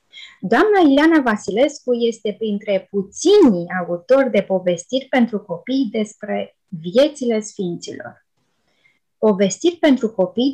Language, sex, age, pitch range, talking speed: Romanian, female, 20-39, 205-285 Hz, 95 wpm